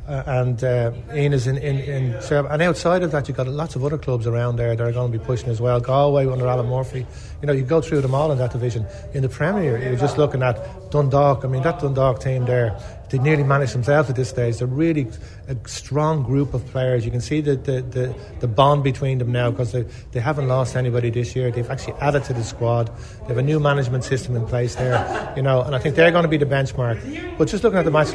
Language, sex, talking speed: English, male, 255 wpm